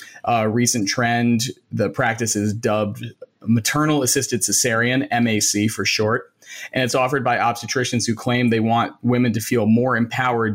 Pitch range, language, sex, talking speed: 110-125 Hz, English, male, 155 wpm